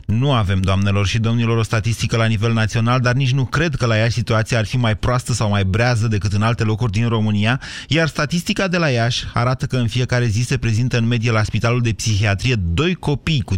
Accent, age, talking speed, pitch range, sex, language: native, 30-49, 230 wpm, 105-140 Hz, male, Romanian